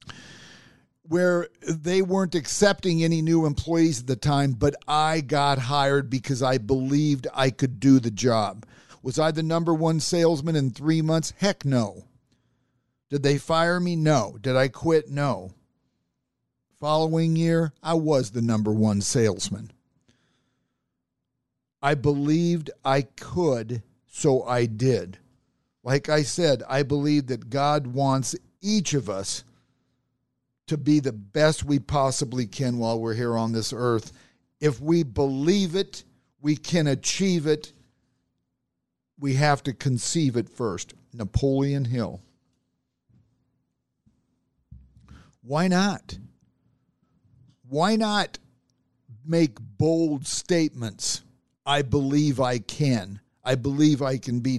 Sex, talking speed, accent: male, 125 wpm, American